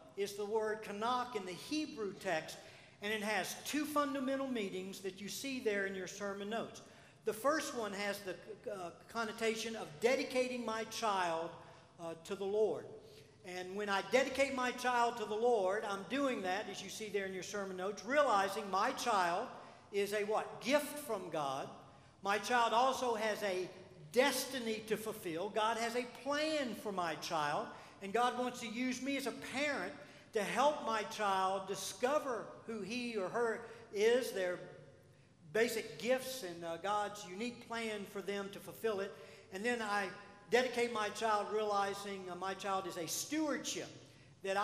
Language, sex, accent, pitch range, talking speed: English, male, American, 190-245 Hz, 170 wpm